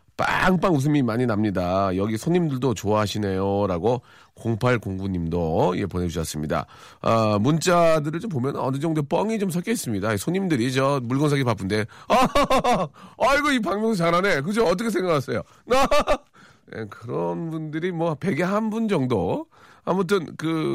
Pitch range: 105-160 Hz